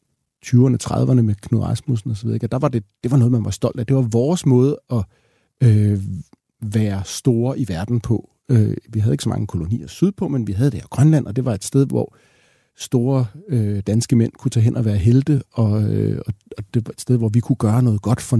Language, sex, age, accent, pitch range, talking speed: Danish, male, 40-59, native, 110-135 Hz, 235 wpm